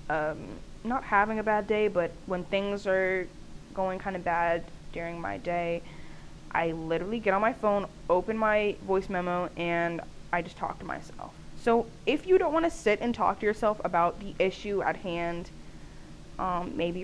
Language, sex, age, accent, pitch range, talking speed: English, female, 10-29, American, 175-225 Hz, 180 wpm